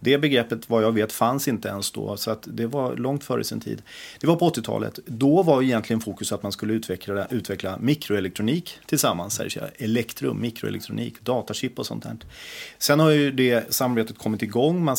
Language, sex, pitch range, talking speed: Swedish, male, 95-125 Hz, 185 wpm